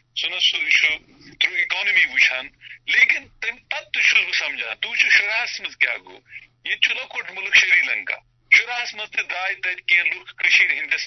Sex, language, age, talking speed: male, Urdu, 50-69, 120 wpm